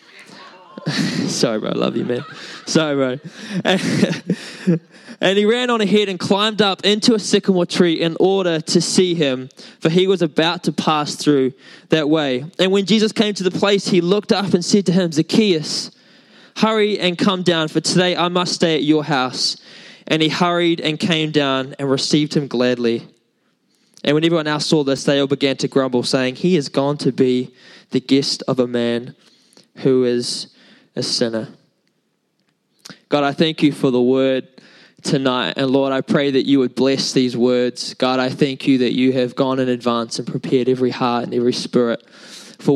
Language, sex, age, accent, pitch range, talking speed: English, male, 10-29, Australian, 130-180 Hz, 190 wpm